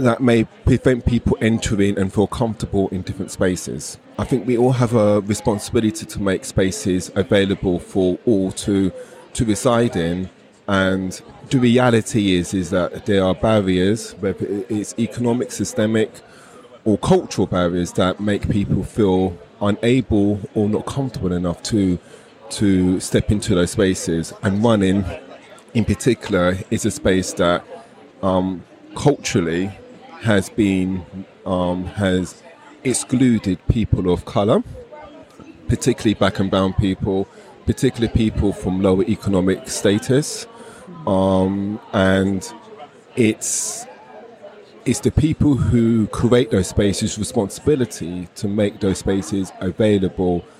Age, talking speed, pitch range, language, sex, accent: 30-49, 125 wpm, 95-115 Hz, English, male, British